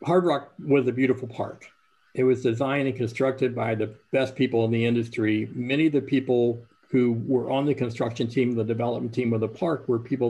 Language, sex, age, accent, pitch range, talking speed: English, male, 50-69, American, 115-135 Hz, 210 wpm